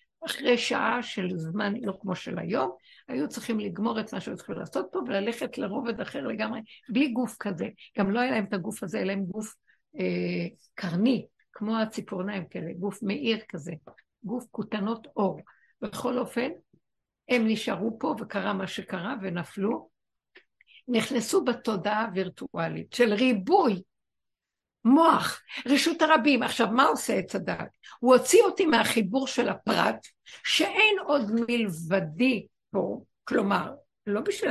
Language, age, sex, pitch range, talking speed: Hebrew, 60-79, female, 205-280 Hz, 135 wpm